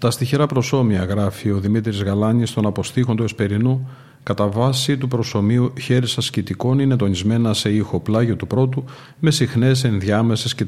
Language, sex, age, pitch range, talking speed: Greek, male, 50-69, 115-140 Hz, 155 wpm